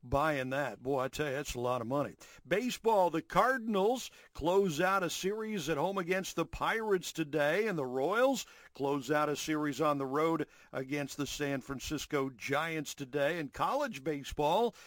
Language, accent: English, American